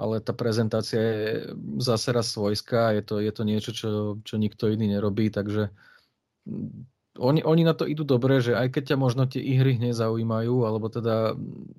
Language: Slovak